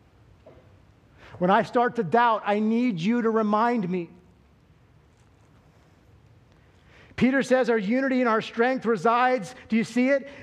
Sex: male